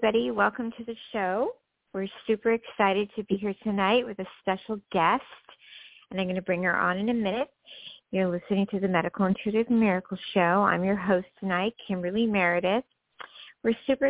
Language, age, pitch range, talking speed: English, 50-69, 185-220 Hz, 175 wpm